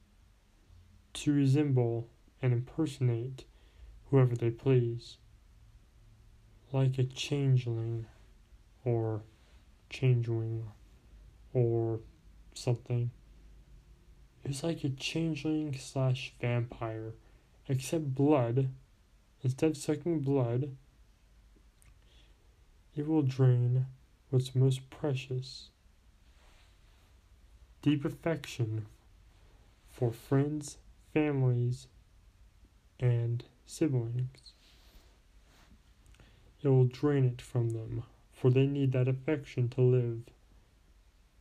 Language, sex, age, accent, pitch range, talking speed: English, male, 20-39, American, 95-130 Hz, 75 wpm